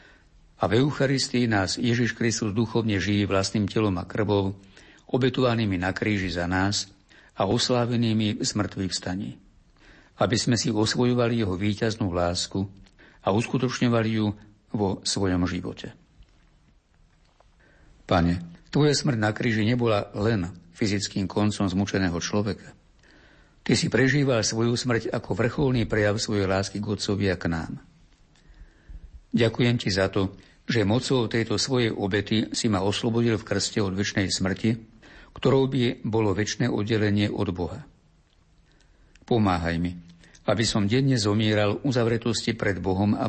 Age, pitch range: 60-79, 95-115 Hz